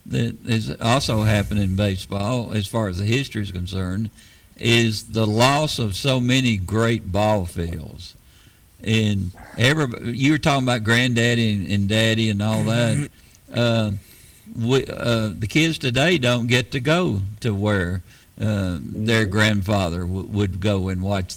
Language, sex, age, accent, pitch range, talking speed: English, male, 60-79, American, 100-125 Hz, 155 wpm